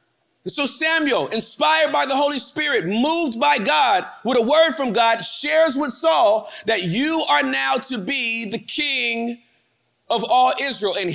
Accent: American